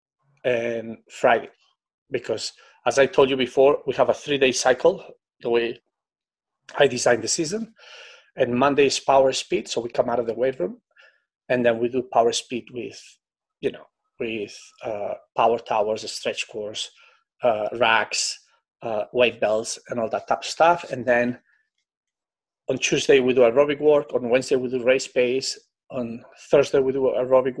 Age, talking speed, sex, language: 40-59, 165 wpm, male, English